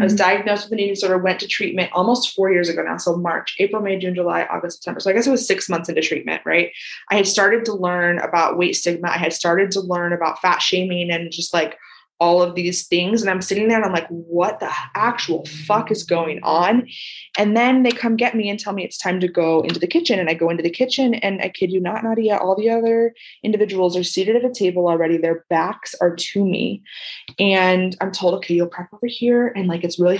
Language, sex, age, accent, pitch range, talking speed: English, female, 20-39, American, 175-235 Hz, 250 wpm